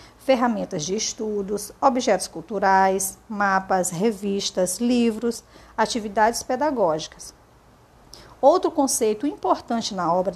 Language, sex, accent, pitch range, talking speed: Portuguese, female, Brazilian, 195-265 Hz, 85 wpm